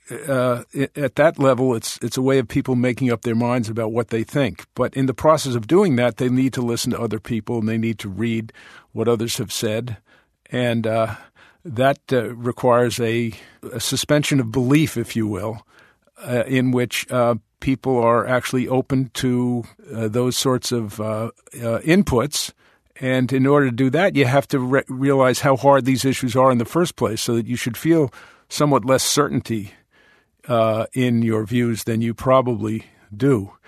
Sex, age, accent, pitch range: male, 50-69, American, 115-130 Hz